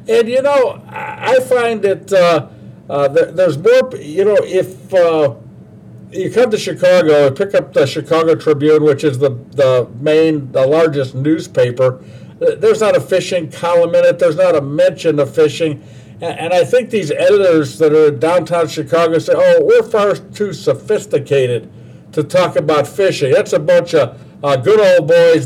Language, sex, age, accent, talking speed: English, male, 60-79, American, 175 wpm